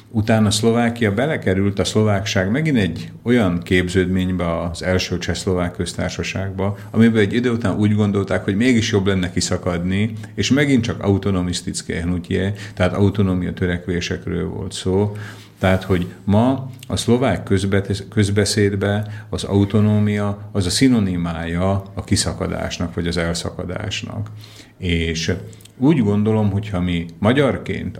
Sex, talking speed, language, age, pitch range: male, 120 wpm, Slovak, 50-69, 90-105 Hz